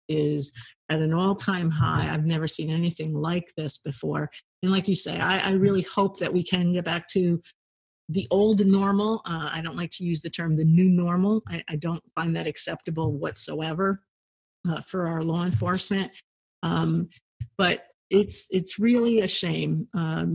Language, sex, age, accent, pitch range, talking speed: English, female, 50-69, American, 160-190 Hz, 175 wpm